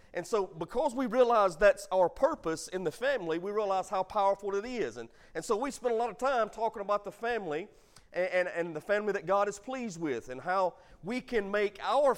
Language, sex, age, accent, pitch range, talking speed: English, male, 40-59, American, 200-280 Hz, 225 wpm